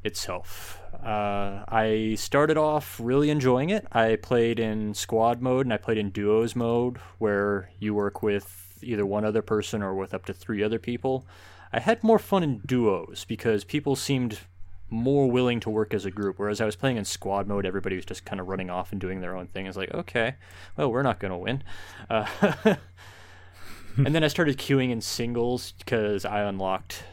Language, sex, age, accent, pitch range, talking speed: English, male, 20-39, American, 95-120 Hz, 195 wpm